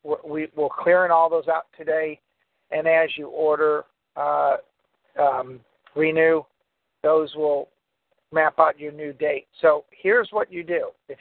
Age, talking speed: 50-69, 145 wpm